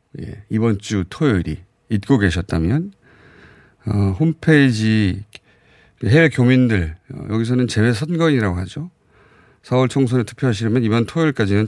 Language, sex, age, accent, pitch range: Korean, male, 40-59, native, 100-135 Hz